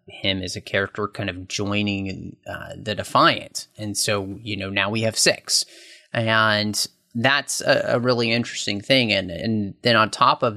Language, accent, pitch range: English, American, 100-115 Hz